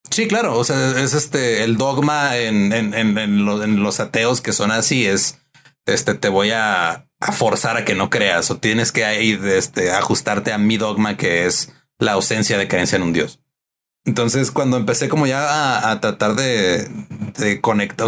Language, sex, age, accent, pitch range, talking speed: Spanish, male, 30-49, Mexican, 105-120 Hz, 195 wpm